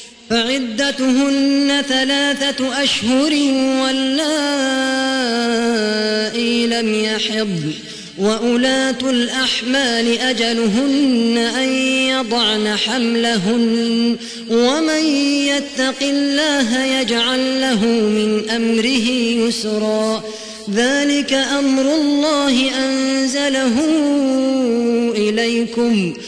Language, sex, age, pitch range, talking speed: Arabic, female, 30-49, 230-265 Hz, 55 wpm